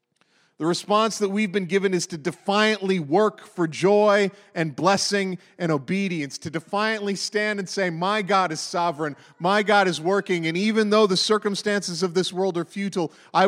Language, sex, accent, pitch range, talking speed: English, male, American, 155-195 Hz, 180 wpm